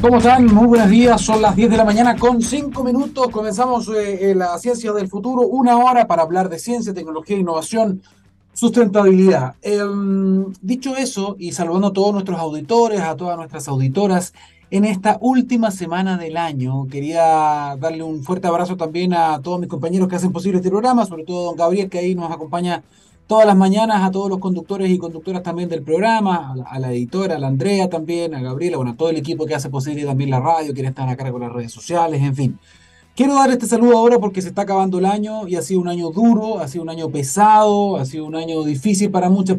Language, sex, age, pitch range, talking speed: Spanish, male, 30-49, 155-210 Hz, 220 wpm